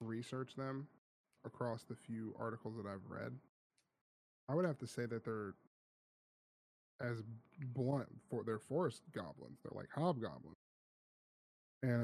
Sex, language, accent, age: male, English, American, 10-29